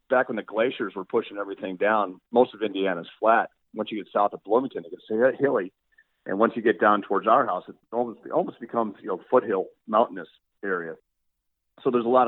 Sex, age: male, 40-59